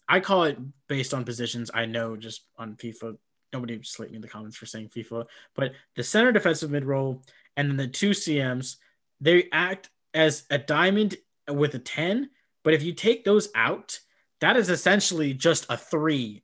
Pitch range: 130-180 Hz